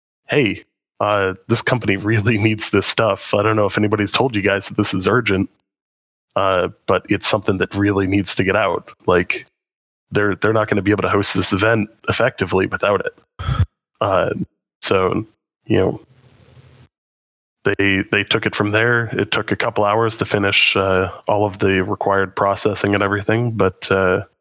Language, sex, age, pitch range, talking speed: English, male, 20-39, 100-115 Hz, 175 wpm